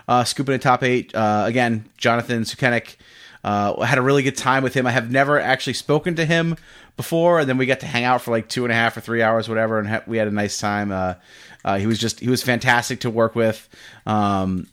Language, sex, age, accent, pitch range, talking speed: English, male, 30-49, American, 105-130 Hz, 250 wpm